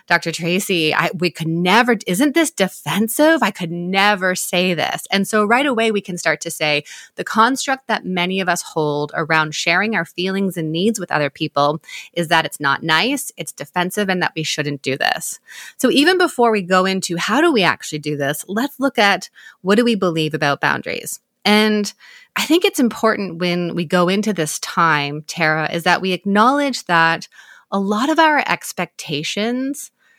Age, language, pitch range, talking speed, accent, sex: 20-39, English, 160-210 Hz, 190 wpm, American, female